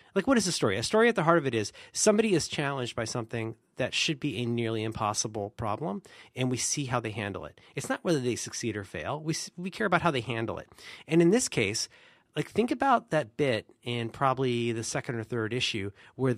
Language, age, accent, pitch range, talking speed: English, 30-49, American, 115-165 Hz, 235 wpm